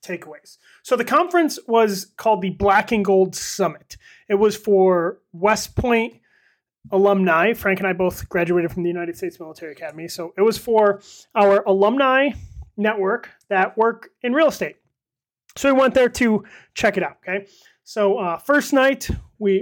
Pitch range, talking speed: 185-220 Hz, 165 wpm